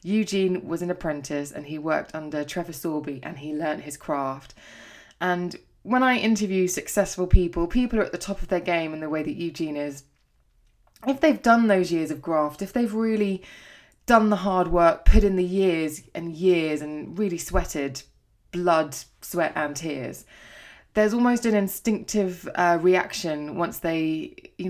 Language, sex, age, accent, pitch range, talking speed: English, female, 20-39, British, 150-185 Hz, 175 wpm